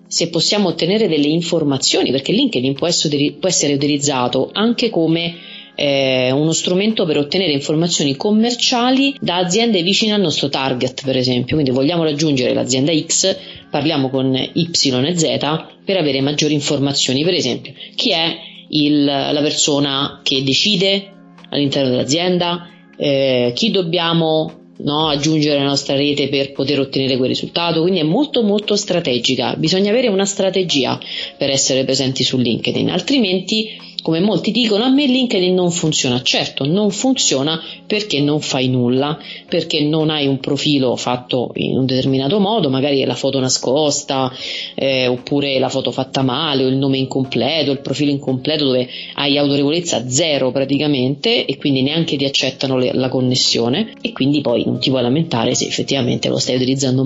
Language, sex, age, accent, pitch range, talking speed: Italian, female, 30-49, native, 135-175 Hz, 150 wpm